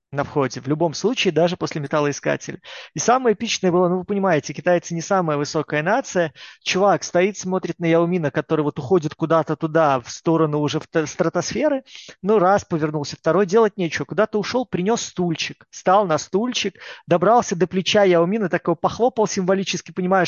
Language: Russian